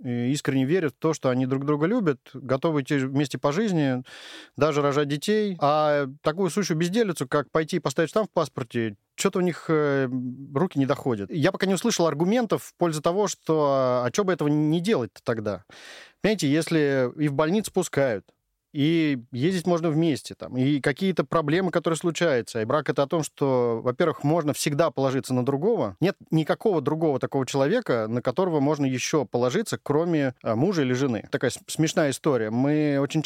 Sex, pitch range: male, 135-170 Hz